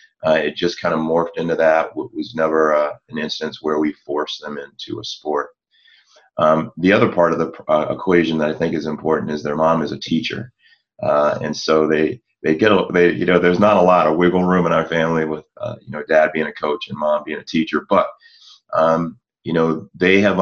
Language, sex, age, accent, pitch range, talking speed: English, male, 30-49, American, 80-85 Hz, 225 wpm